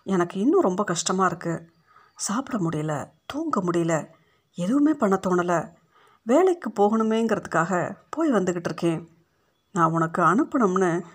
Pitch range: 170-215 Hz